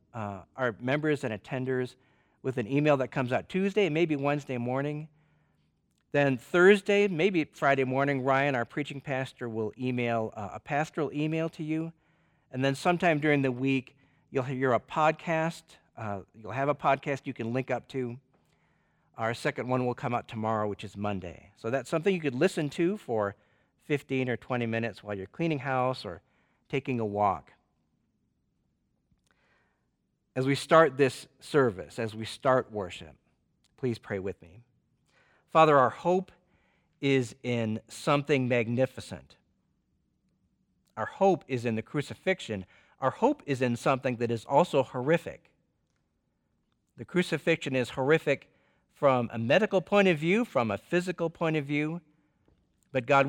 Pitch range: 115-155 Hz